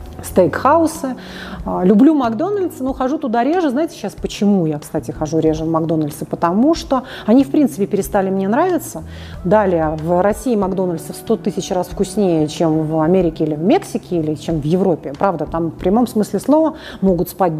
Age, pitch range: 30-49, 170-225 Hz